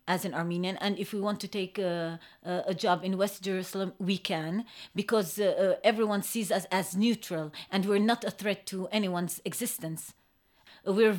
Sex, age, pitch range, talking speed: female, 30-49, 180-215 Hz, 170 wpm